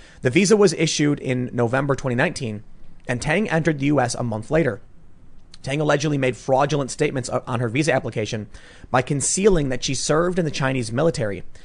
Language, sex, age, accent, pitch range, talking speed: English, male, 30-49, American, 115-150 Hz, 170 wpm